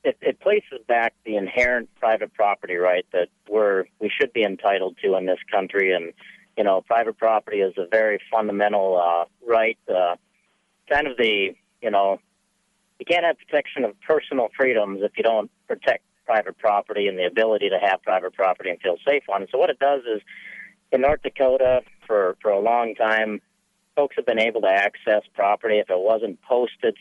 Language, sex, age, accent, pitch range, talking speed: English, male, 50-69, American, 100-140 Hz, 190 wpm